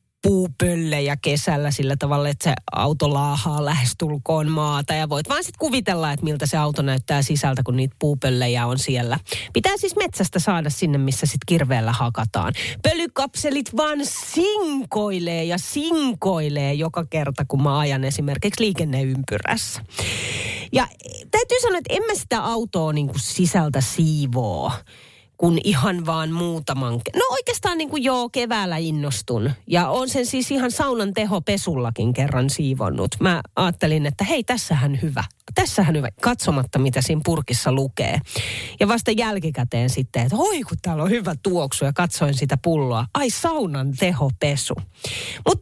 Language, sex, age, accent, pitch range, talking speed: Finnish, female, 30-49, native, 135-200 Hz, 145 wpm